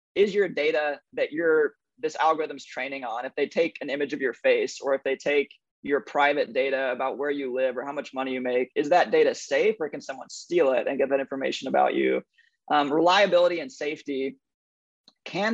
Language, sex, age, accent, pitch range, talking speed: English, male, 20-39, American, 140-195 Hz, 210 wpm